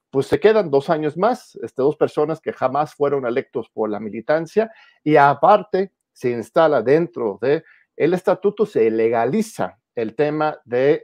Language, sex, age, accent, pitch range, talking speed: Spanish, male, 50-69, Mexican, 120-175 Hz, 160 wpm